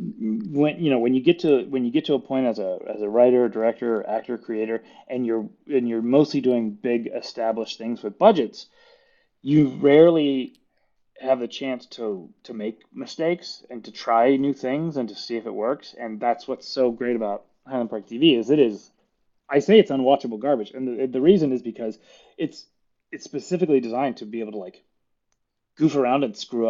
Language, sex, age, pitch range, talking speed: English, male, 30-49, 115-140 Hz, 200 wpm